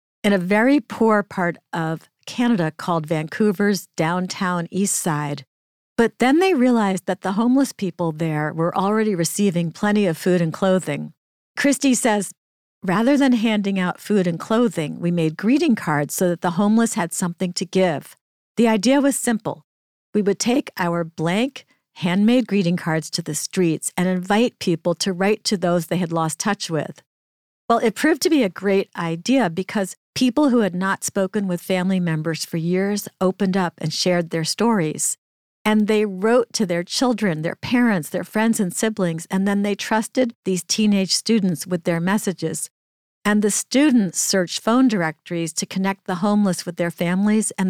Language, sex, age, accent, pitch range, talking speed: English, female, 50-69, American, 170-215 Hz, 175 wpm